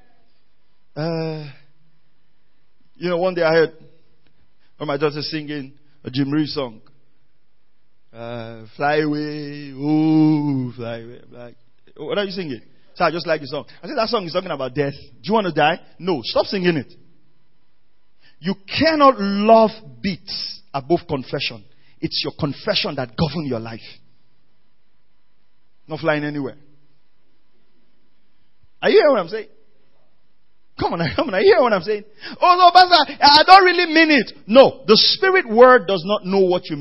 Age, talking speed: 40-59, 160 wpm